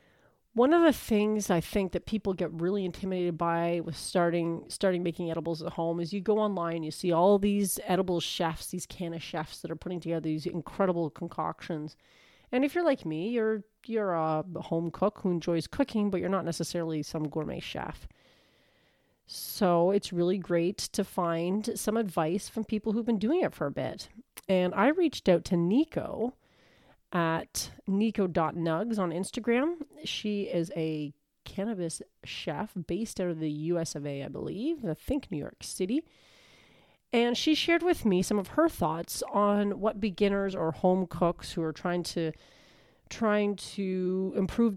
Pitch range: 170-210 Hz